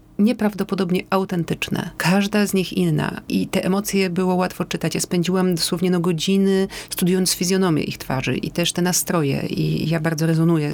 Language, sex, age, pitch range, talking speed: Polish, female, 40-59, 160-185 Hz, 160 wpm